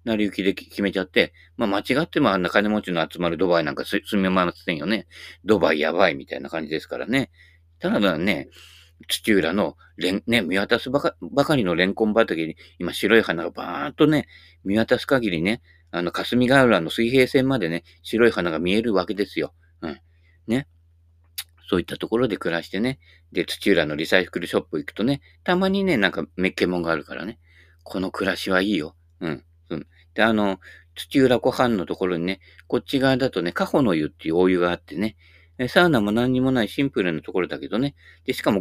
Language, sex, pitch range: Japanese, male, 85-110 Hz